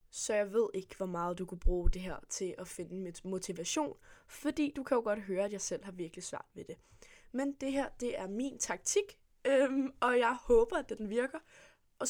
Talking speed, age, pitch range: 225 wpm, 20-39, 190-240 Hz